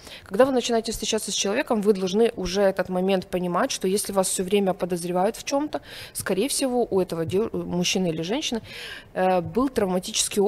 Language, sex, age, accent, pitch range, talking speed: Ukrainian, female, 20-39, native, 180-230 Hz, 170 wpm